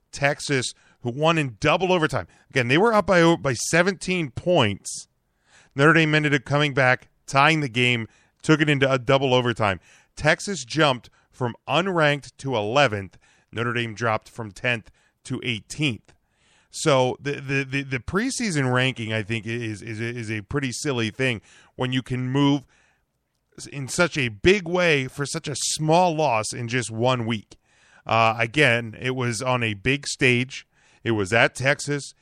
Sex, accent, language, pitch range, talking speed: male, American, English, 110-145 Hz, 165 wpm